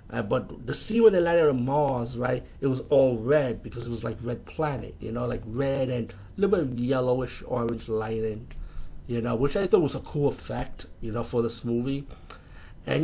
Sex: male